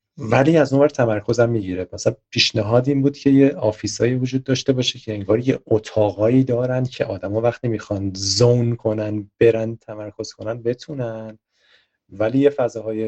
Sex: male